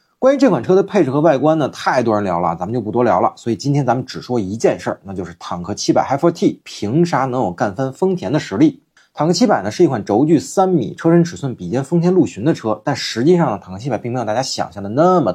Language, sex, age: Chinese, male, 30-49